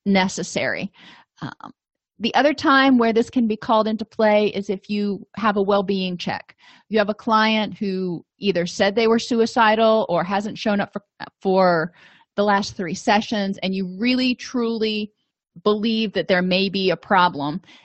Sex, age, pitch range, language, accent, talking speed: female, 30-49, 180-215 Hz, English, American, 170 wpm